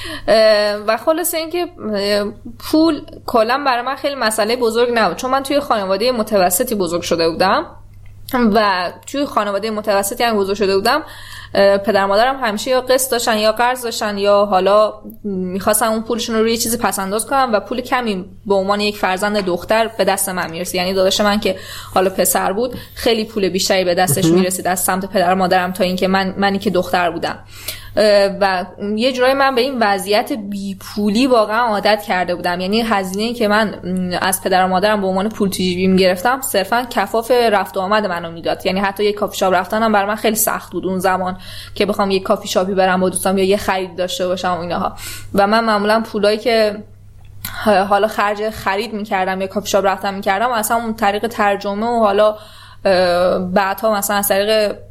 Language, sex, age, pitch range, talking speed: Persian, female, 10-29, 190-225 Hz, 180 wpm